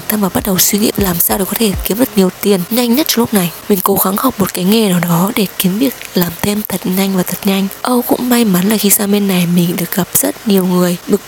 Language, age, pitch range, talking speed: Vietnamese, 20-39, 185-220 Hz, 295 wpm